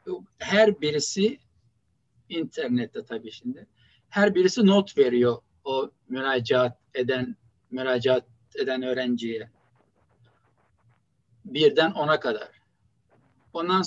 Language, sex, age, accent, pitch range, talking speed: Turkish, male, 60-79, native, 120-195 Hz, 80 wpm